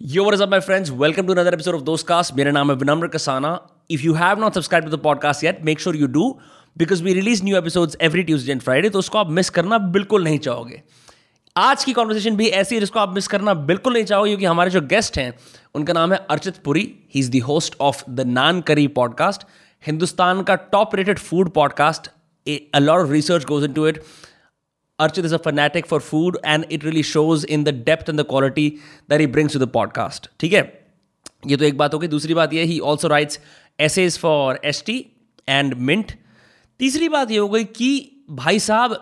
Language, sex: Hindi, male